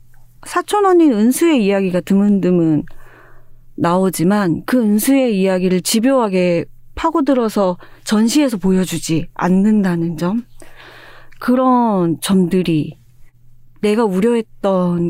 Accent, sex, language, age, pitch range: native, female, Korean, 40-59, 180-250 Hz